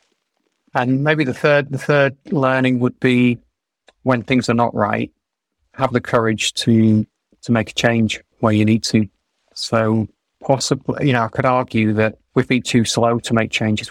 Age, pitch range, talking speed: 30-49, 110-125 Hz, 175 wpm